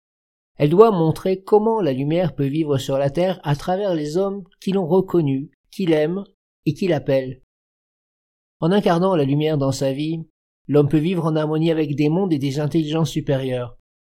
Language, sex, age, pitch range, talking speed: French, male, 50-69, 145-180 Hz, 180 wpm